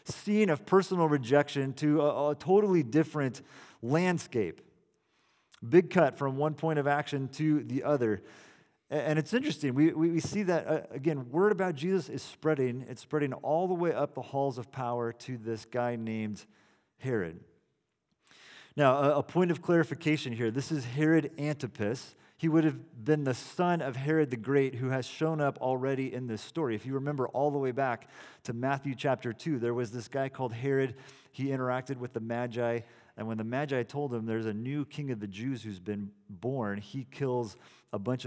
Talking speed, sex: 190 wpm, male